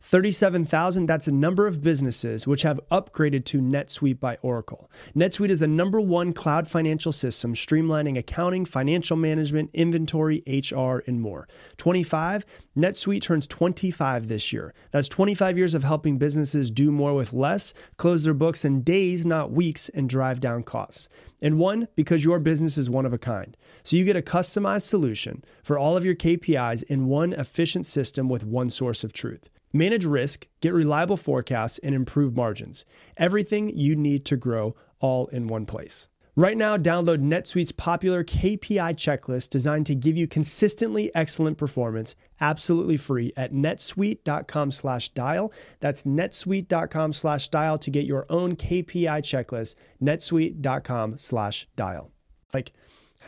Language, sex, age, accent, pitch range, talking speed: English, male, 30-49, American, 130-170 Hz, 155 wpm